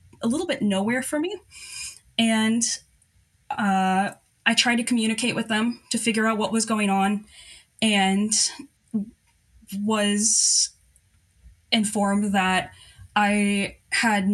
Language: English